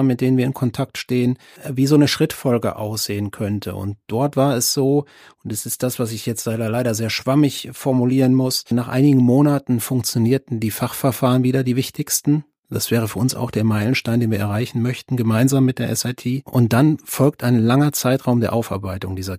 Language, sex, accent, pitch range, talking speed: German, male, German, 115-135 Hz, 190 wpm